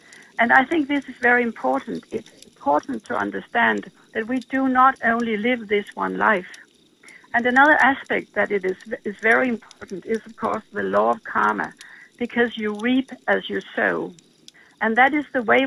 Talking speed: 180 wpm